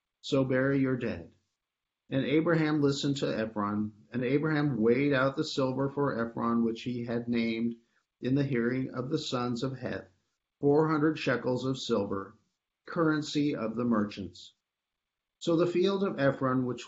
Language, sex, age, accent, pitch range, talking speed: English, male, 50-69, American, 110-145 Hz, 155 wpm